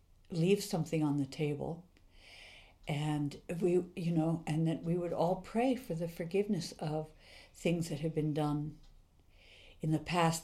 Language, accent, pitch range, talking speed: English, American, 140-170 Hz, 155 wpm